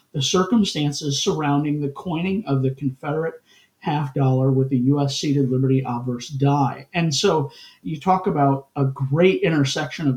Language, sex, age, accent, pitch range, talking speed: English, male, 50-69, American, 135-165 Hz, 155 wpm